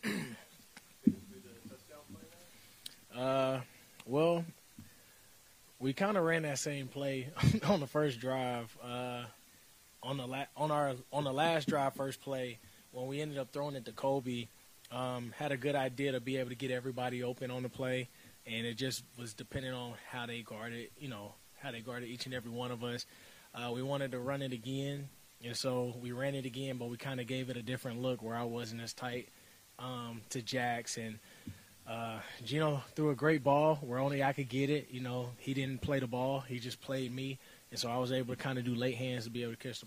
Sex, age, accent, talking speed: male, 20-39, American, 210 wpm